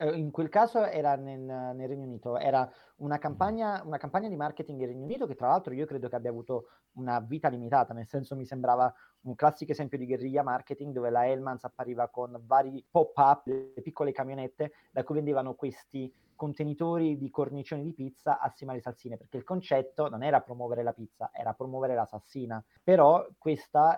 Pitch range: 130-170 Hz